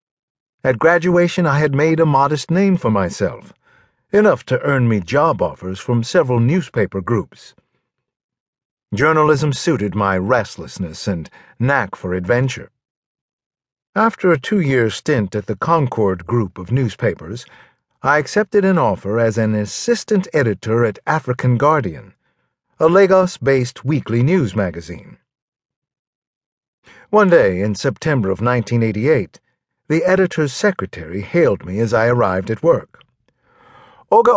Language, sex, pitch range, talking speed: English, male, 115-165 Hz, 125 wpm